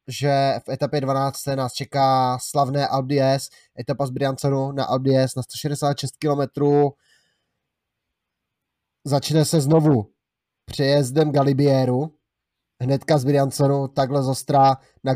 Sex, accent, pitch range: male, native, 130-140 Hz